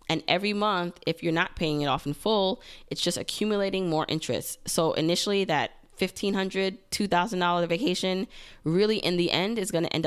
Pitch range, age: 150-195 Hz, 20-39